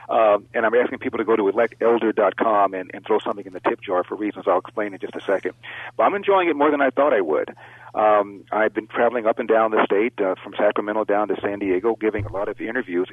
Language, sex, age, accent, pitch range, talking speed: English, male, 40-59, American, 105-130 Hz, 255 wpm